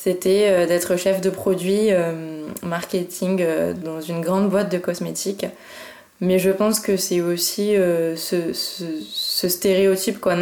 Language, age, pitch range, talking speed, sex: French, 20-39, 175-205 Hz, 150 wpm, female